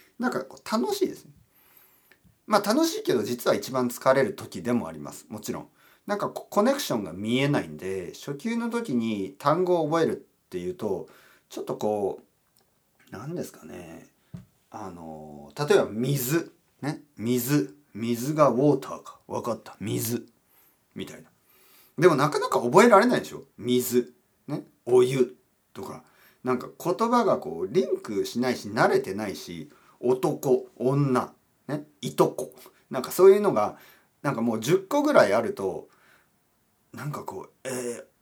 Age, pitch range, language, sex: 40-59, 120-190 Hz, Japanese, male